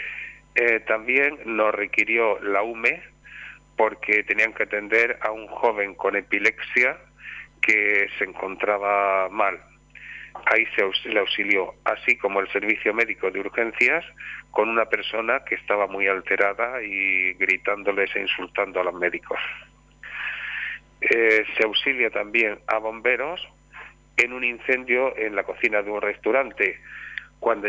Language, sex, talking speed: Spanish, male, 130 wpm